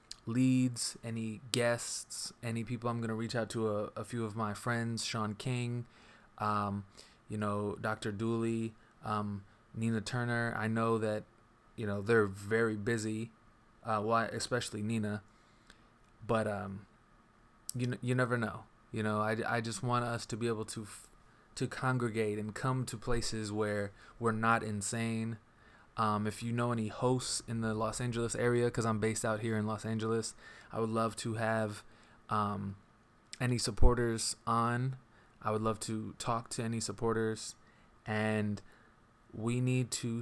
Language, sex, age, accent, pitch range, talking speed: English, male, 20-39, American, 110-120 Hz, 155 wpm